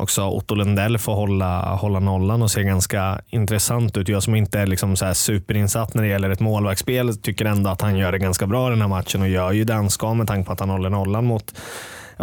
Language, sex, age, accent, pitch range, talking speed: Swedish, male, 20-39, native, 95-110 Hz, 240 wpm